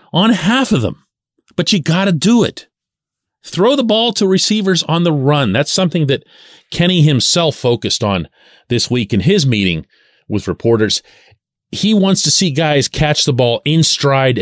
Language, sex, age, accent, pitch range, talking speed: English, male, 40-59, American, 135-205 Hz, 175 wpm